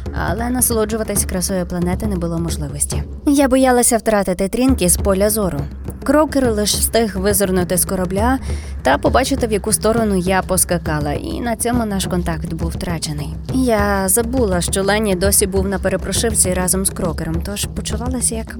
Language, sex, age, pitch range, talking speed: Ukrainian, female, 20-39, 180-235 Hz, 155 wpm